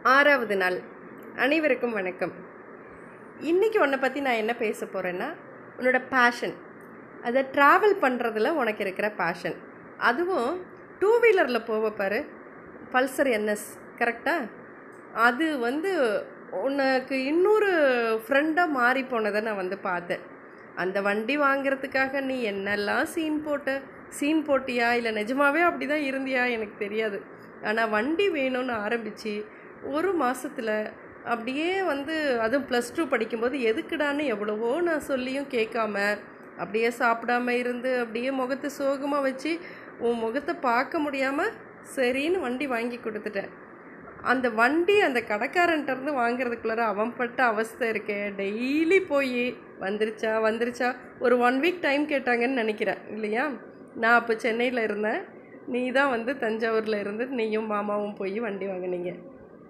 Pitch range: 220-280 Hz